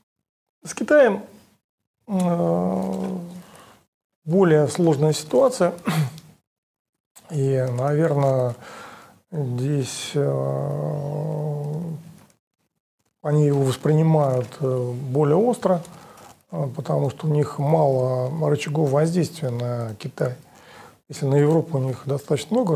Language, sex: Russian, male